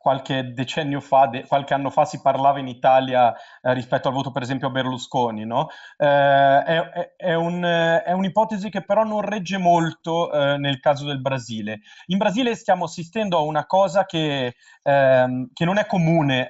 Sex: male